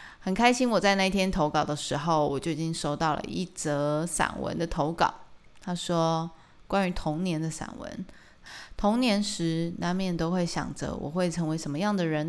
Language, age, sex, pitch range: Chinese, 20-39, female, 155-195 Hz